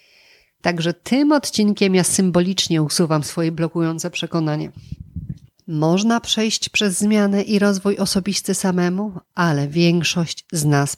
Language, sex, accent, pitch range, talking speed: Polish, female, native, 150-195 Hz, 115 wpm